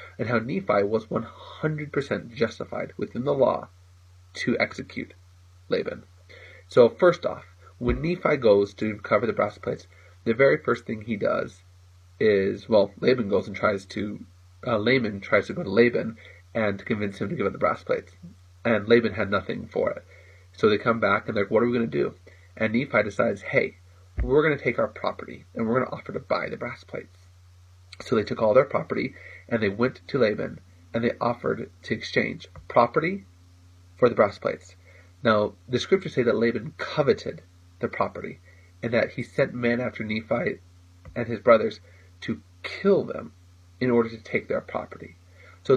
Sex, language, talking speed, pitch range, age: male, English, 185 wpm, 90-120 Hz, 30-49